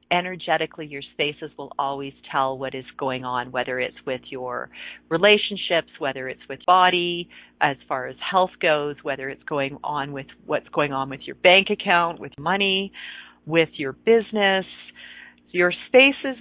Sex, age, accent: female, 40-59, American